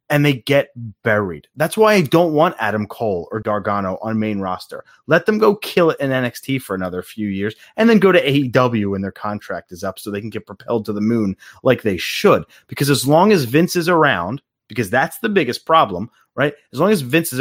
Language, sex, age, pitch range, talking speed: English, male, 30-49, 110-160 Hz, 230 wpm